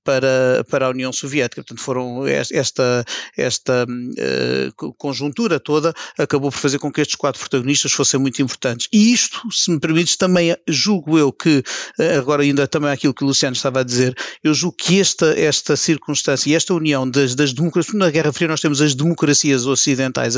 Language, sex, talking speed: Portuguese, male, 190 wpm